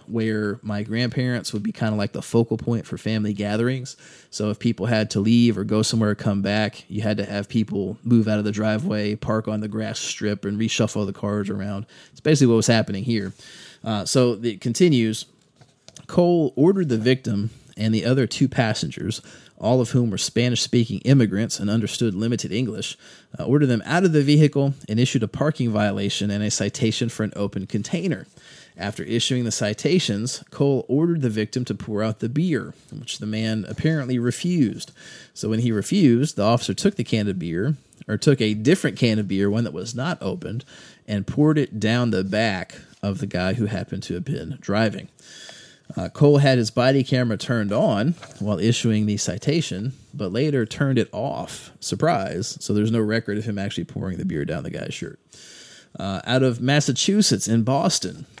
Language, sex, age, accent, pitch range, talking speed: English, male, 20-39, American, 105-130 Hz, 190 wpm